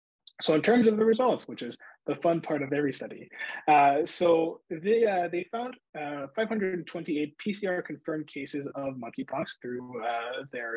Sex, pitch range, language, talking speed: male, 130-165 Hz, English, 165 wpm